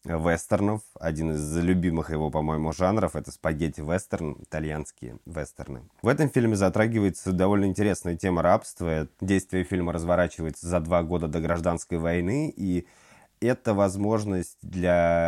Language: Russian